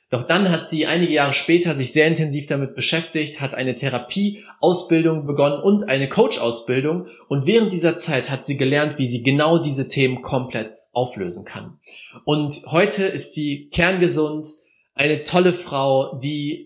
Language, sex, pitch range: German, male, 125-160 Hz